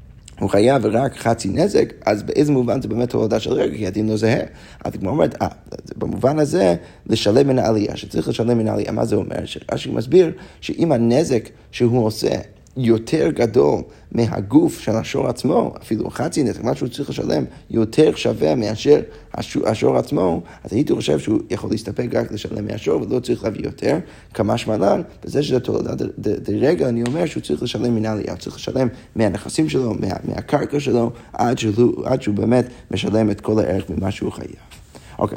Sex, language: male, Hebrew